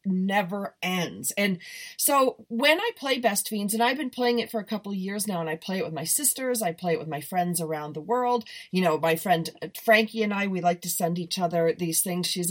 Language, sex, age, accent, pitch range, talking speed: English, female, 40-59, American, 175-230 Hz, 250 wpm